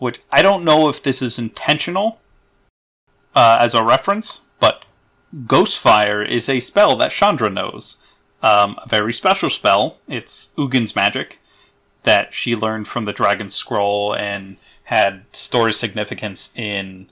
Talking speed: 140 wpm